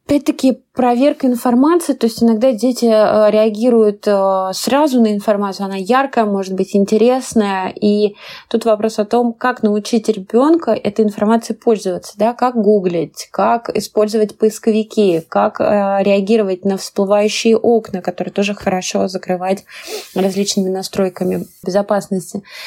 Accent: native